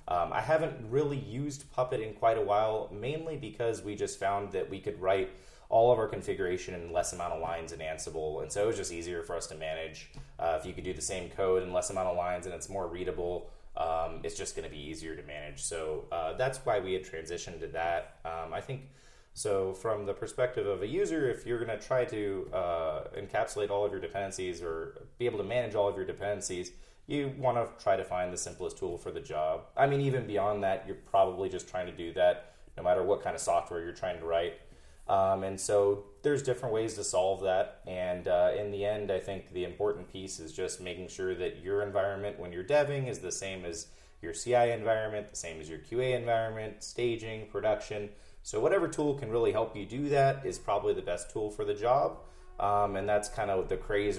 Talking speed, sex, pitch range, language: 230 wpm, male, 90-130 Hz, English